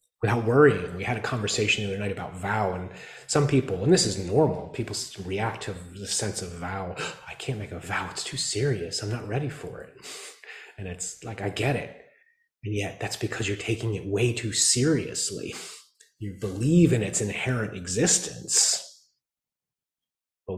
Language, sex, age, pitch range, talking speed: English, male, 30-49, 95-130 Hz, 180 wpm